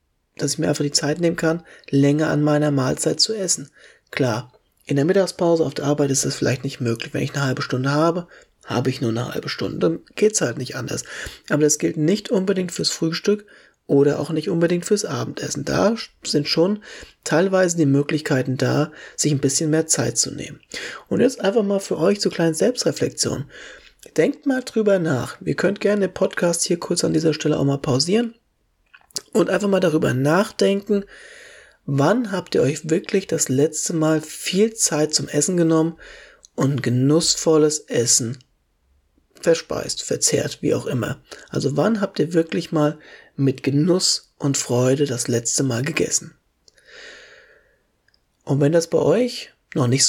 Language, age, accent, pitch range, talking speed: German, 30-49, German, 140-185 Hz, 175 wpm